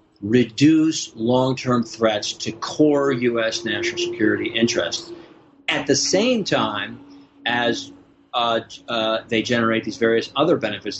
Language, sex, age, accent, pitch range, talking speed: English, male, 40-59, American, 105-135 Hz, 120 wpm